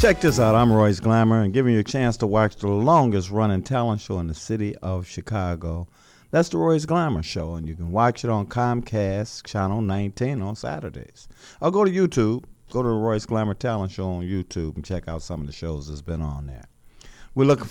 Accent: American